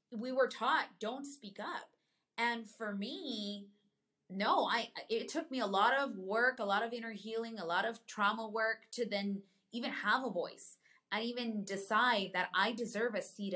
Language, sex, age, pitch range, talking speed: English, female, 20-39, 180-230 Hz, 185 wpm